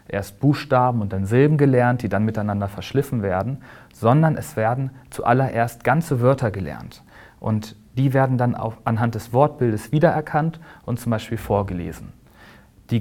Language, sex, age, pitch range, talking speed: German, male, 40-59, 110-130 Hz, 150 wpm